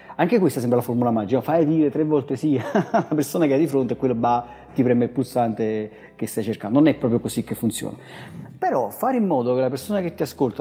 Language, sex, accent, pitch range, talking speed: Italian, male, native, 125-160 Hz, 240 wpm